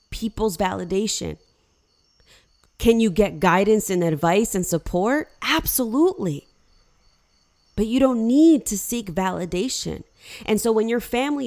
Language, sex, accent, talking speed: English, female, American, 120 wpm